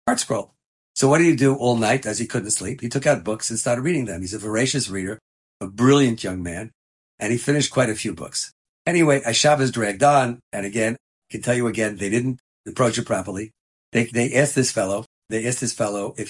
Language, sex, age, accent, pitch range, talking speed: English, male, 50-69, American, 110-135 Hz, 225 wpm